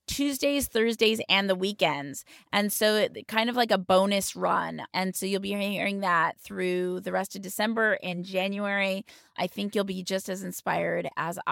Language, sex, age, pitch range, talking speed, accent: English, female, 20-39, 185-215 Hz, 175 wpm, American